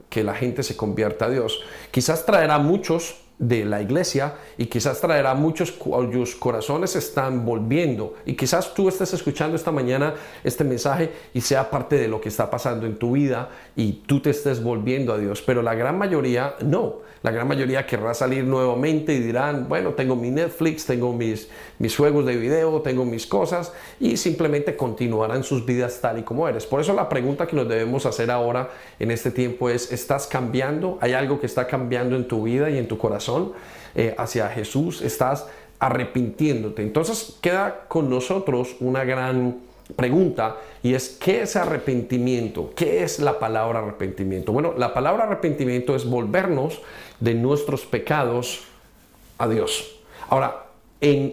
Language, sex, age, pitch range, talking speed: Spanish, male, 40-59, 120-150 Hz, 170 wpm